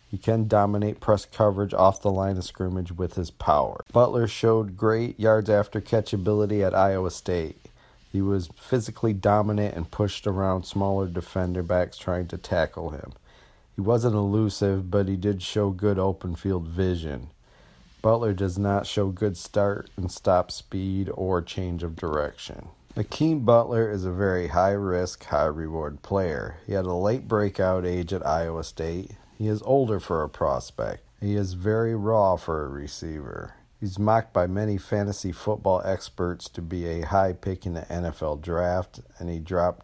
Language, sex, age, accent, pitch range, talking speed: English, male, 40-59, American, 85-105 Hz, 165 wpm